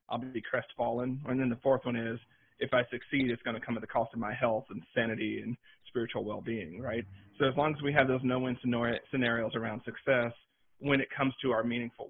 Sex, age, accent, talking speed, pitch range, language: male, 40-59, American, 225 wpm, 120-135 Hz, English